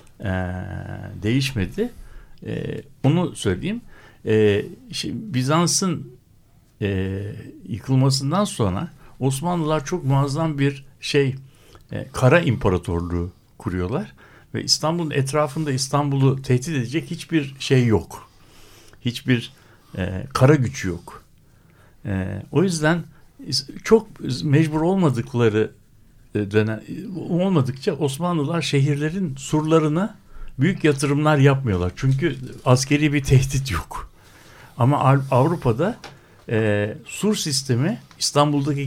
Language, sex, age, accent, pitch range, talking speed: Turkish, male, 60-79, native, 110-150 Hz, 90 wpm